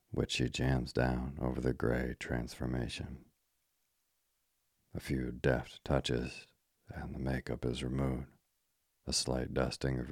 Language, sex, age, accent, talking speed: English, male, 40-59, American, 125 wpm